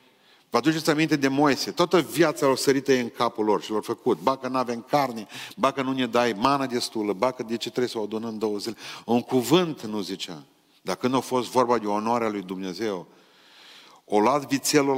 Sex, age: male, 40-59